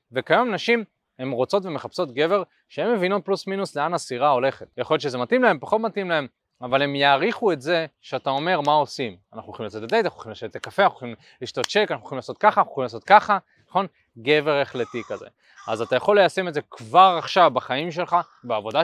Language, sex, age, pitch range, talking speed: Hebrew, male, 20-39, 135-195 Hz, 160 wpm